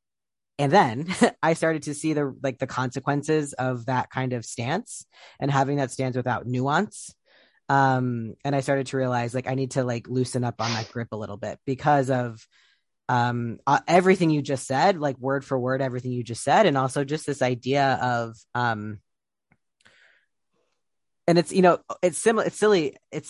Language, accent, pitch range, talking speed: English, American, 125-155 Hz, 185 wpm